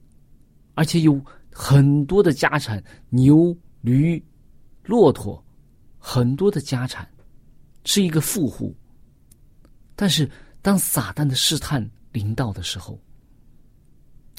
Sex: male